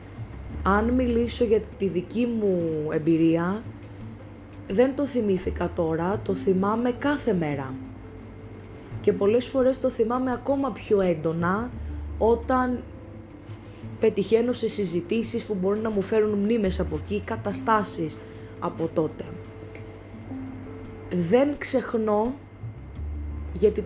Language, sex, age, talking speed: Greek, female, 20-39, 105 wpm